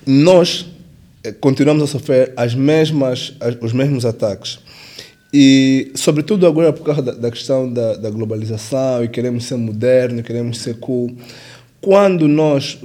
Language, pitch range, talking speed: Portuguese, 125-150 Hz, 140 wpm